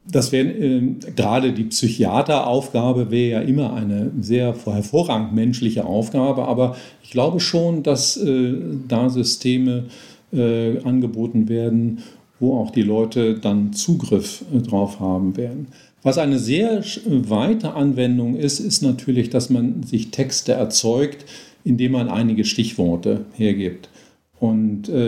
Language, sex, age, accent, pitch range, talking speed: German, male, 50-69, German, 110-140 Hz, 125 wpm